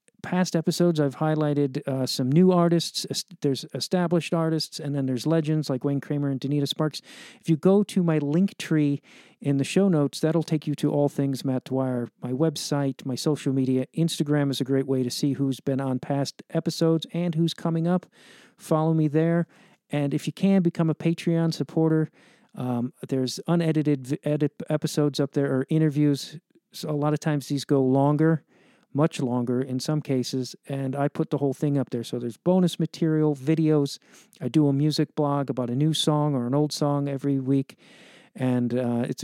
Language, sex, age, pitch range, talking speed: English, male, 50-69, 135-160 Hz, 190 wpm